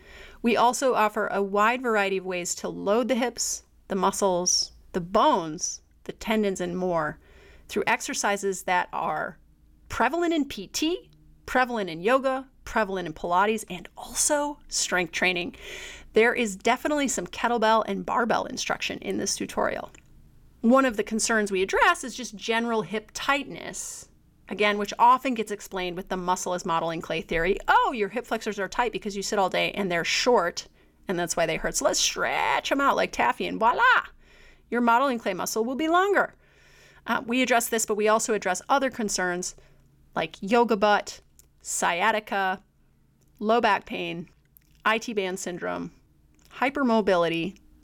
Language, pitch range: English, 180-240 Hz